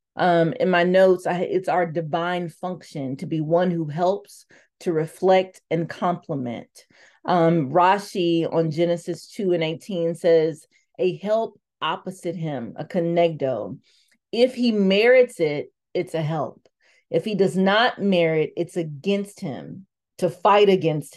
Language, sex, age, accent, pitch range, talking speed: English, female, 40-59, American, 165-195 Hz, 140 wpm